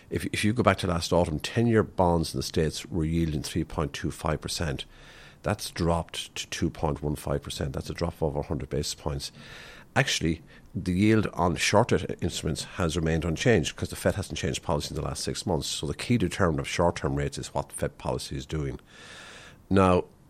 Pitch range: 75-95 Hz